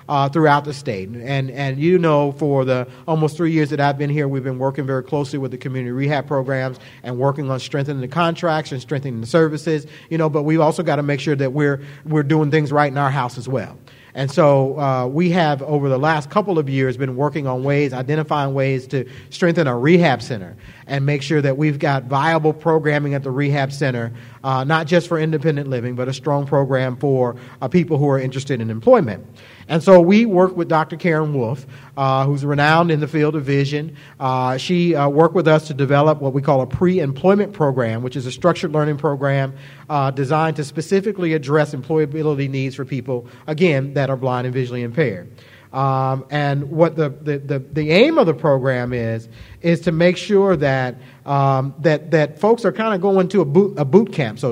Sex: male